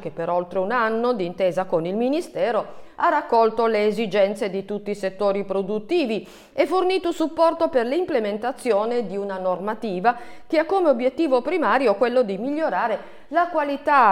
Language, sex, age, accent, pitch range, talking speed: Italian, female, 50-69, native, 190-270 Hz, 155 wpm